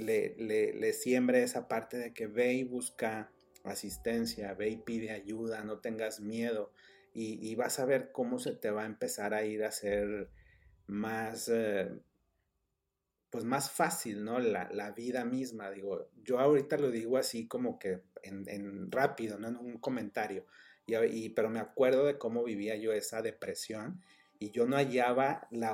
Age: 40-59